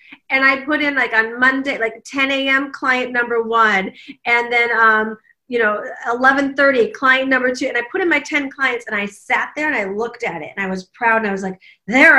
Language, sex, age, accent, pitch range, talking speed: English, female, 30-49, American, 220-275 Hz, 230 wpm